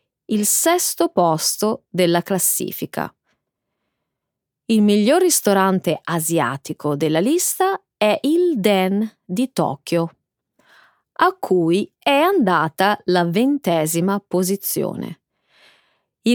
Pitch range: 170-255 Hz